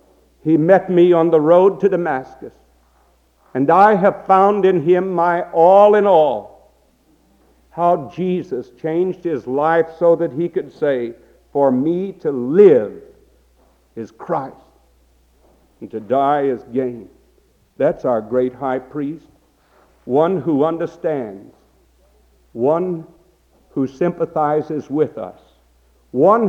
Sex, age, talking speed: male, 60-79, 120 wpm